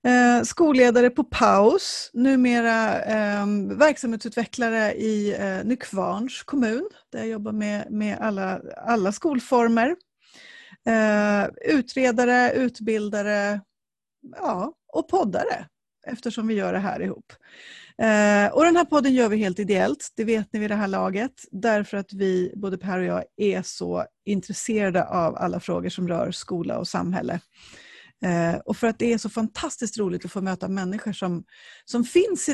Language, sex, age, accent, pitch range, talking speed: Swedish, female, 30-49, native, 200-275 Hz, 150 wpm